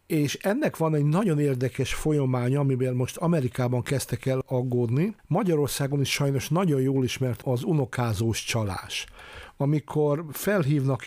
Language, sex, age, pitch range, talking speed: Hungarian, male, 60-79, 125-145 Hz, 130 wpm